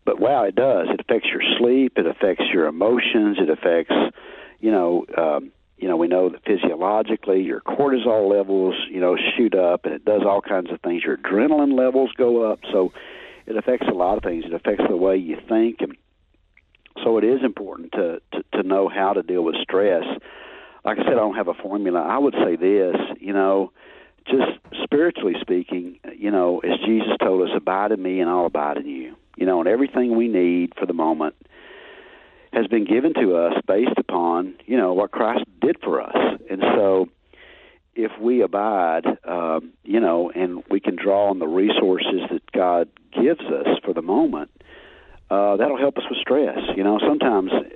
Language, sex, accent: English, male, American